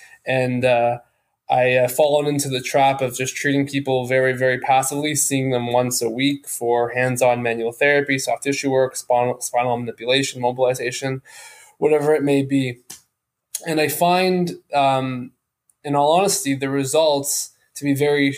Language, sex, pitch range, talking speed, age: English, male, 125-140 Hz, 155 wpm, 20-39